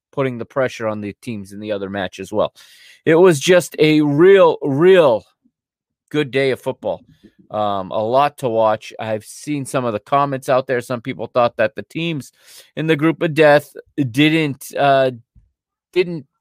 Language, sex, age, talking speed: English, male, 30-49, 180 wpm